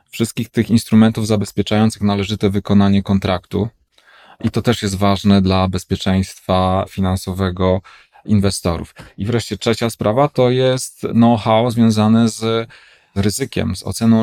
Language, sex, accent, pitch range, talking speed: Polish, male, native, 100-120 Hz, 120 wpm